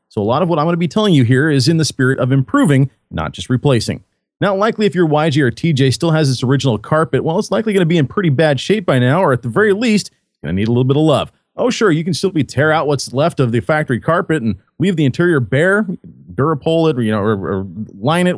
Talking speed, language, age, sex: 285 wpm, English, 30-49, male